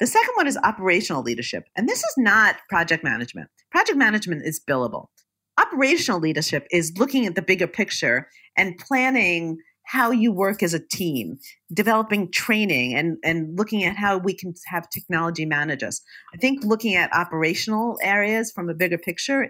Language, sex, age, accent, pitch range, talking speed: English, female, 40-59, American, 165-230 Hz, 170 wpm